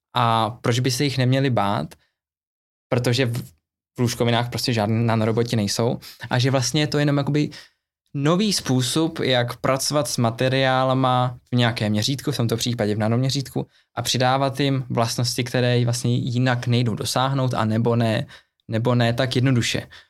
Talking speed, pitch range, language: 155 wpm, 120-135 Hz, Czech